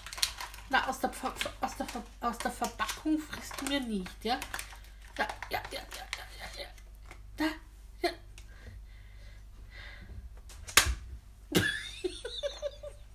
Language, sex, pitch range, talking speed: German, female, 195-310 Hz, 85 wpm